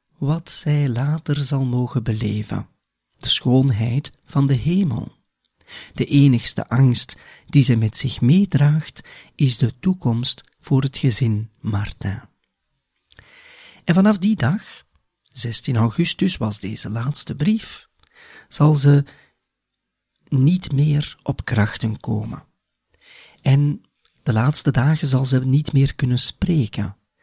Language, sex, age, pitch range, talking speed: Dutch, male, 40-59, 110-150 Hz, 115 wpm